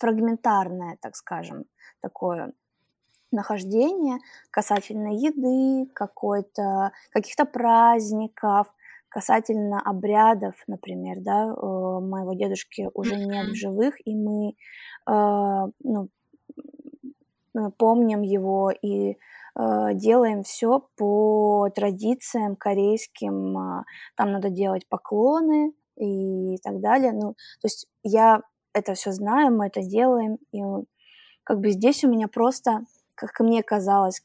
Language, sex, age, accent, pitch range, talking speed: Russian, female, 20-39, native, 200-240 Hz, 105 wpm